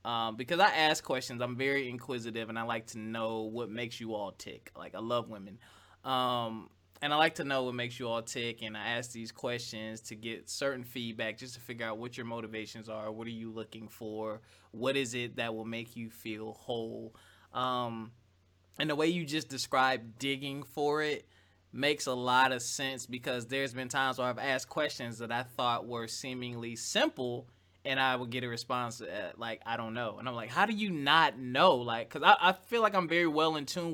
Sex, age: male, 20-39